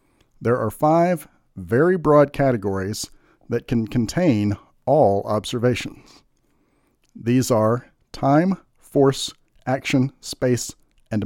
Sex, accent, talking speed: male, American, 95 wpm